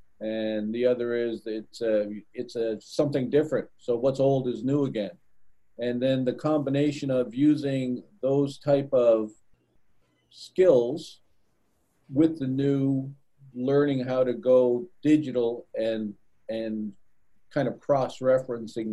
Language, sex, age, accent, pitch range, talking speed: English, male, 50-69, American, 105-130 Hz, 125 wpm